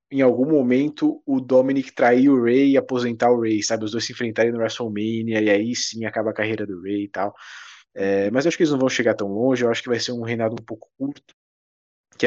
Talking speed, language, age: 250 wpm, Portuguese, 20-39